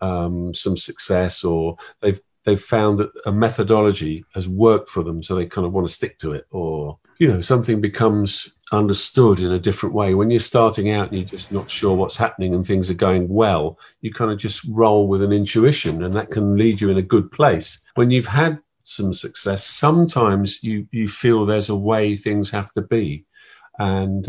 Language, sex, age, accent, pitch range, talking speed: English, male, 50-69, British, 95-115 Hz, 205 wpm